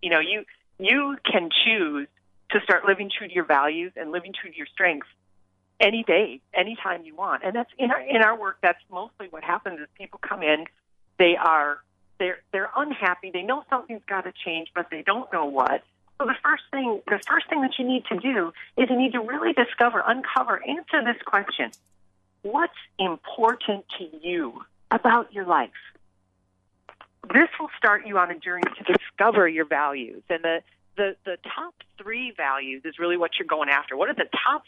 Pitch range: 150-235 Hz